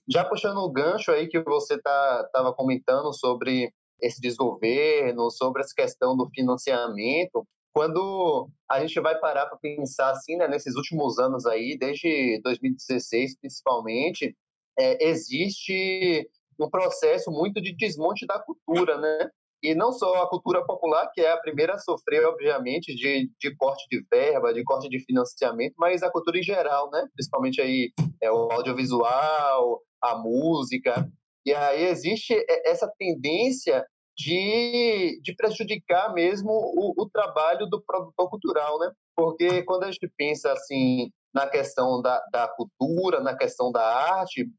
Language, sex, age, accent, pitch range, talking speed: Portuguese, male, 20-39, Brazilian, 140-220 Hz, 145 wpm